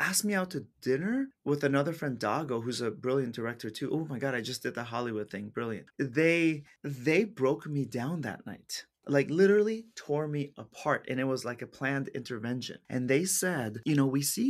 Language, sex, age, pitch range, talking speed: English, male, 30-49, 130-175 Hz, 205 wpm